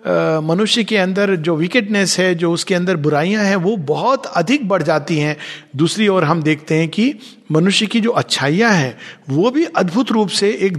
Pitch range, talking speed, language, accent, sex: 155-210 Hz, 190 wpm, Hindi, native, male